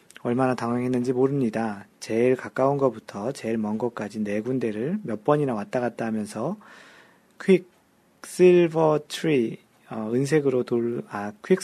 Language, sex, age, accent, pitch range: Korean, male, 40-59, native, 115-160 Hz